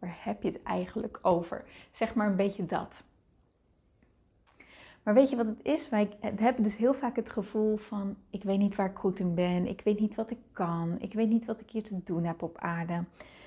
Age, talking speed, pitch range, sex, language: 30-49, 220 wpm, 190-235 Hz, female, Dutch